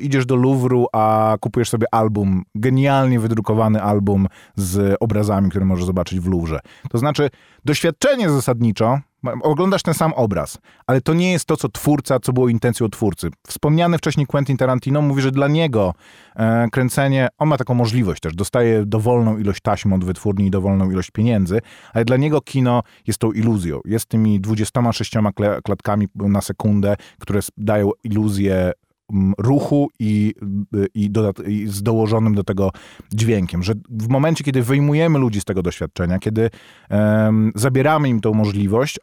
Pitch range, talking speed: 105-135 Hz, 150 wpm